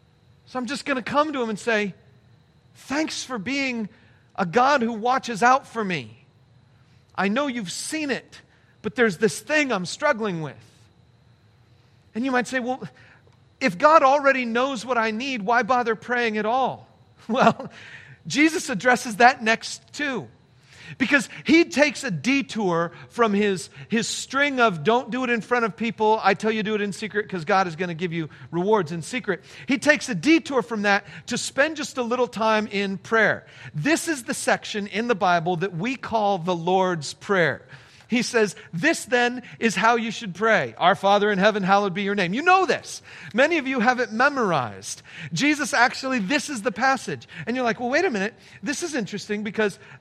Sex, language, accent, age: male, English, American, 40-59